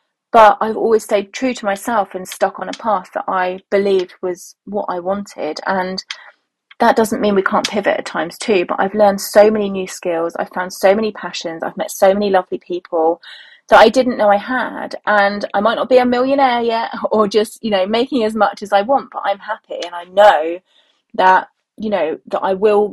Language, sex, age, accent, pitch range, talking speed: English, female, 30-49, British, 180-235 Hz, 215 wpm